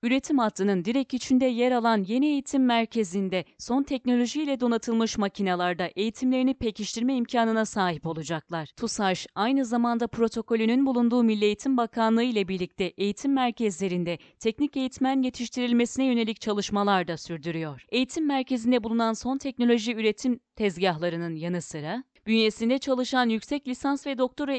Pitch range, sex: 200-255 Hz, female